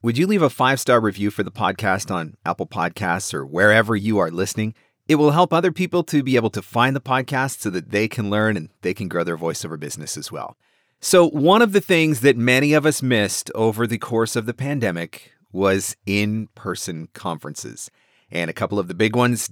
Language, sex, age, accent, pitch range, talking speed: English, male, 40-59, American, 105-140 Hz, 215 wpm